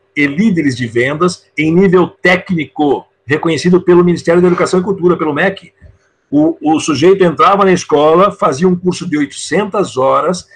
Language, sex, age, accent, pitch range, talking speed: Portuguese, male, 60-79, Brazilian, 150-190 Hz, 160 wpm